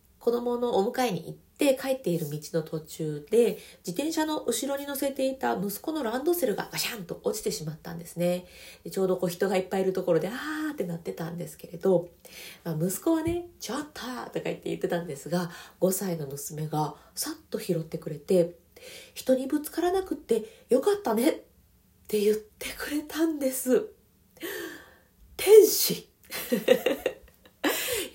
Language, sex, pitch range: Japanese, female, 175-275 Hz